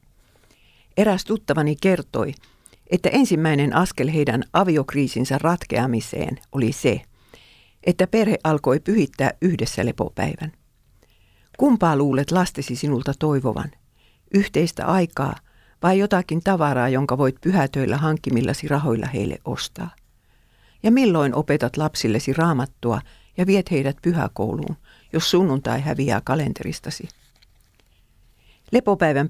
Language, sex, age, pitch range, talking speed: Finnish, female, 50-69, 135-180 Hz, 100 wpm